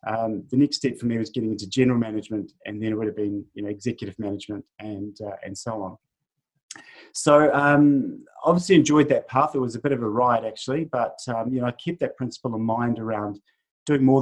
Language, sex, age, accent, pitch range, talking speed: English, male, 30-49, Australian, 110-140 Hz, 230 wpm